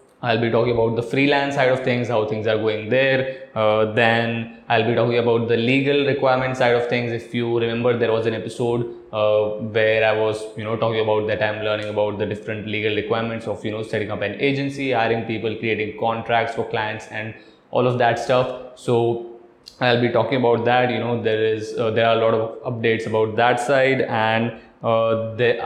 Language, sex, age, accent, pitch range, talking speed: Hindi, male, 20-39, native, 110-130 Hz, 210 wpm